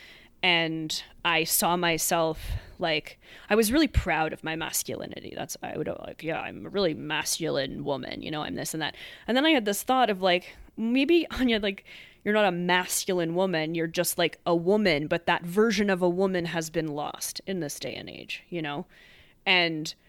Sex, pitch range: female, 160-200 Hz